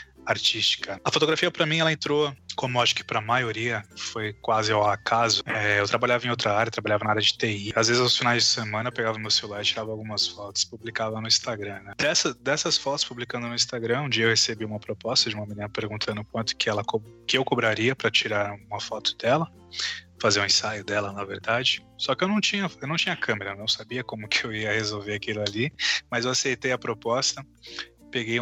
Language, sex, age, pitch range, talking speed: Portuguese, male, 20-39, 105-125 Hz, 220 wpm